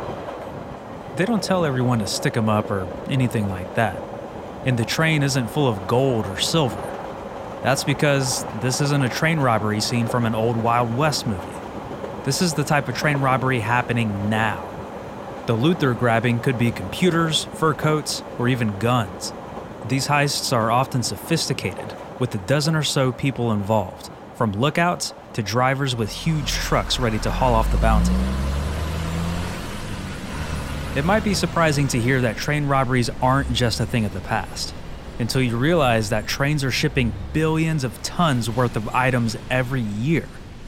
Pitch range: 110-145 Hz